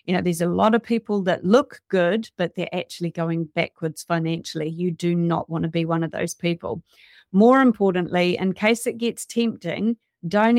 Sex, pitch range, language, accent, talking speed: female, 175-225 Hz, English, Australian, 195 wpm